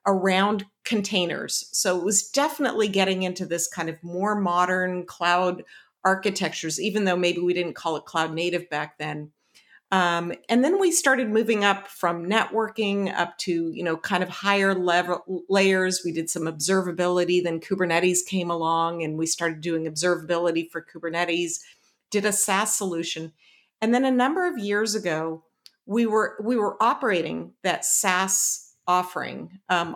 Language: English